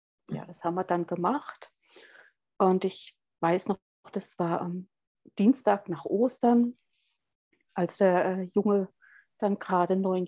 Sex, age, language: female, 50-69, German